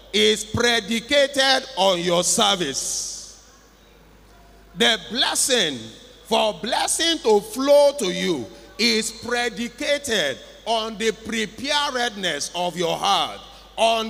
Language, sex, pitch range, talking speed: English, male, 190-250 Hz, 95 wpm